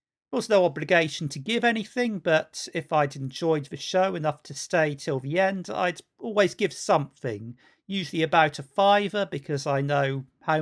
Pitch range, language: 155-205 Hz, English